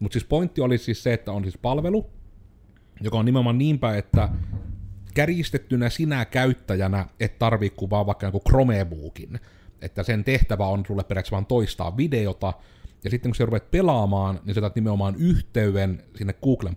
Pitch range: 95-120 Hz